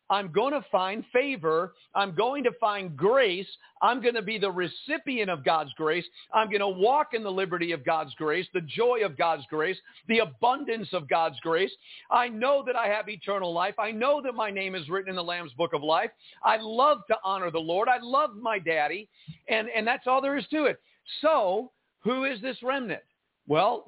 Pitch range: 160-210 Hz